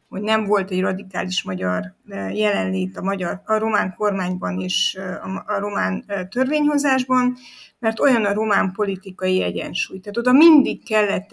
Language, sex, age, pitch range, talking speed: Hungarian, female, 50-69, 185-225 Hz, 140 wpm